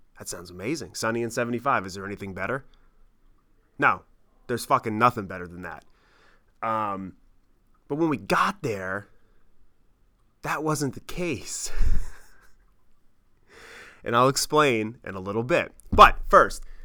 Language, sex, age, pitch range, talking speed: English, male, 30-49, 100-140 Hz, 130 wpm